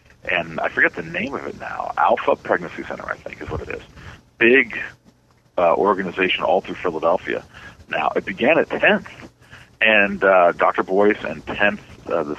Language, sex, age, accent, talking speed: English, male, 50-69, American, 175 wpm